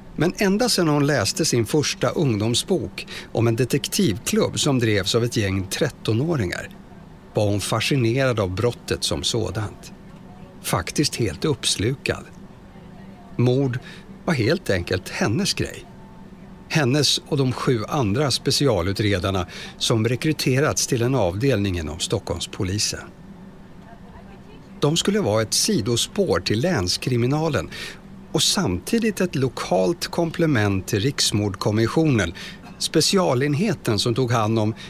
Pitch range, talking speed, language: 110-160 Hz, 115 wpm, Swedish